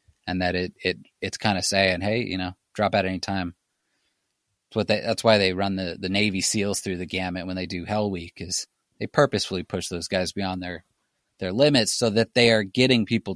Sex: male